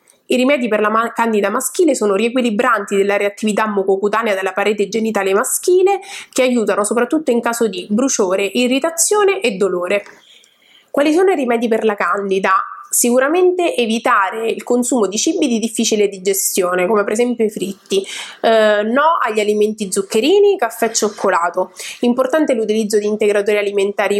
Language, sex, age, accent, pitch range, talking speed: Italian, female, 20-39, native, 205-255 Hz, 150 wpm